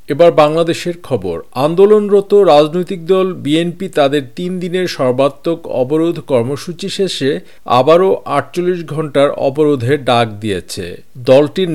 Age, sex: 50-69, male